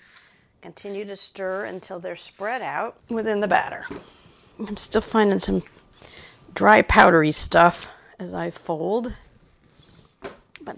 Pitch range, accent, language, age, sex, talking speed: 170-215 Hz, American, English, 50-69, female, 115 wpm